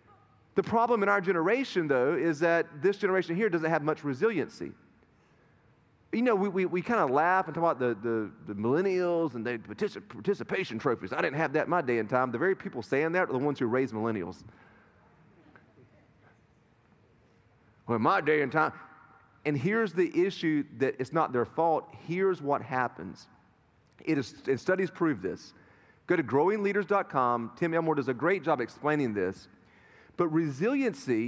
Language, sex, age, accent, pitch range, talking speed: English, male, 30-49, American, 145-205 Hz, 175 wpm